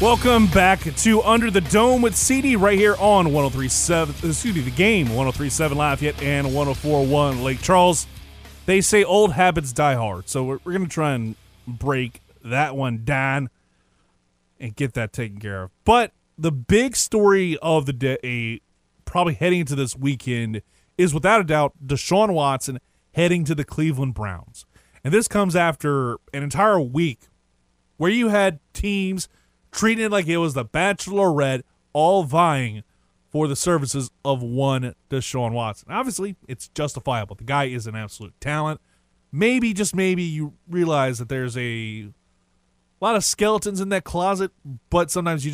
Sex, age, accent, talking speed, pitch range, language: male, 30-49, American, 160 wpm, 115-180 Hz, English